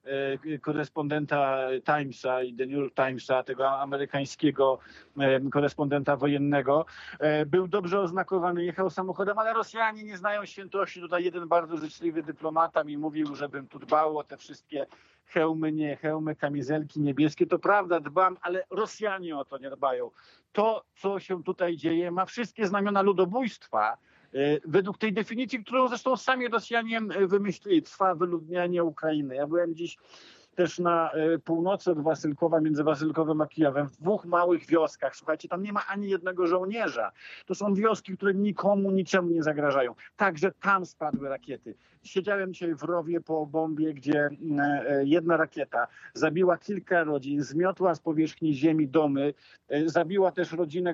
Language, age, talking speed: Polish, 50-69, 145 wpm